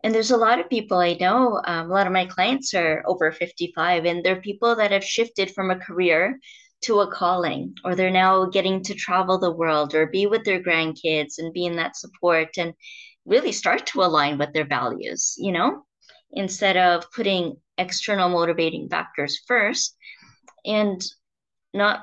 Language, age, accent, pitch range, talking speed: English, 30-49, American, 160-195 Hz, 180 wpm